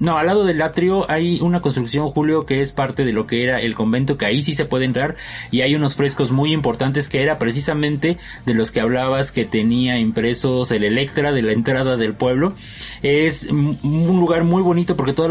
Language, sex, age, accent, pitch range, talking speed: Spanish, male, 30-49, Mexican, 120-150 Hz, 210 wpm